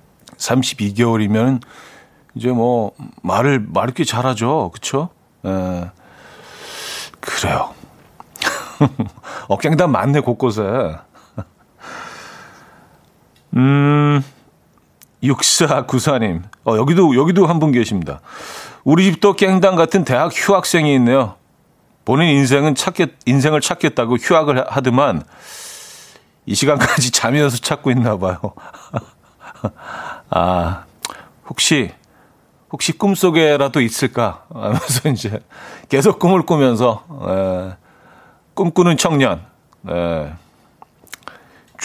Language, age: Korean, 40-59